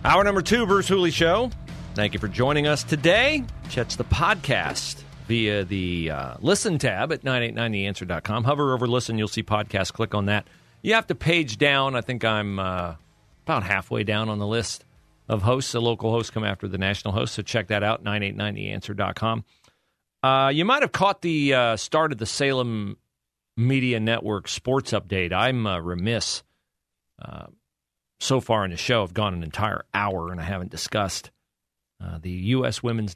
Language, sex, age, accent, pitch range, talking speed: English, male, 40-59, American, 100-135 Hz, 180 wpm